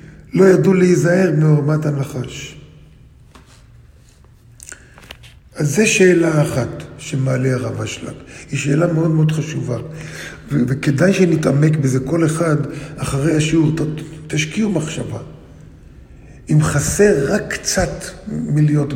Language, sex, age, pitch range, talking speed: Hebrew, male, 50-69, 140-175 Hz, 105 wpm